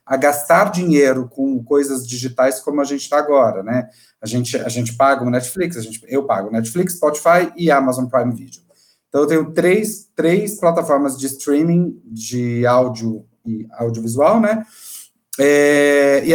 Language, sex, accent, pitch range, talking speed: Portuguese, male, Brazilian, 120-150 Hz, 165 wpm